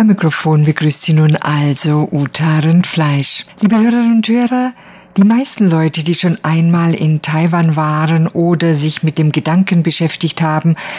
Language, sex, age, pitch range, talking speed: German, female, 50-69, 150-180 Hz, 155 wpm